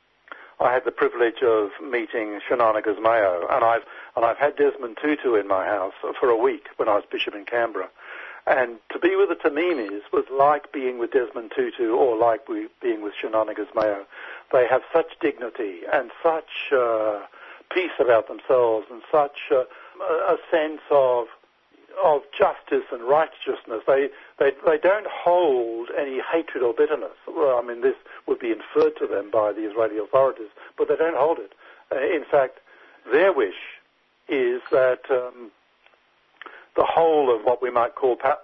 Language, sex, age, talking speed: English, male, 60-79, 165 wpm